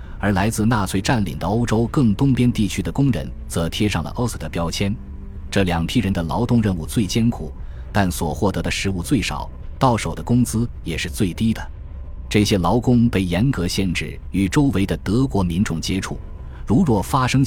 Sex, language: male, Chinese